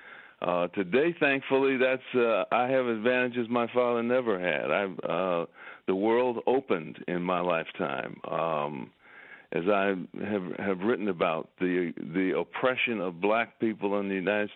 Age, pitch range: 60-79, 95-125 Hz